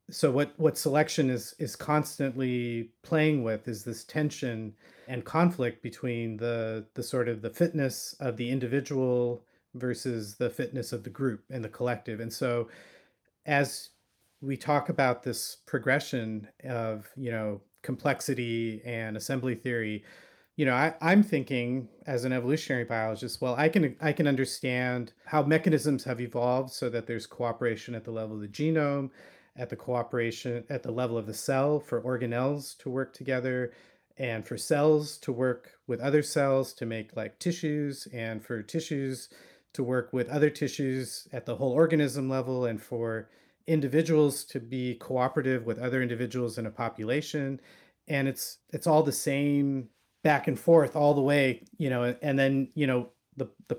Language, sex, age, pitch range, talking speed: English, male, 40-59, 120-145 Hz, 165 wpm